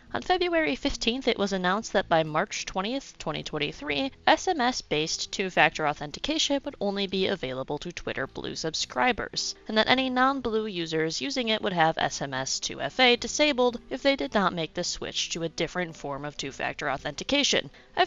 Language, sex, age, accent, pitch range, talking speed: English, female, 20-39, American, 165-250 Hz, 165 wpm